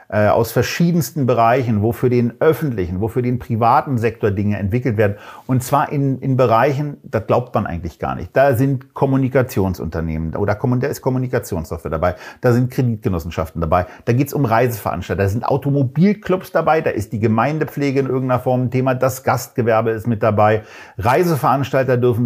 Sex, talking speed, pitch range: male, 165 wpm, 110-140 Hz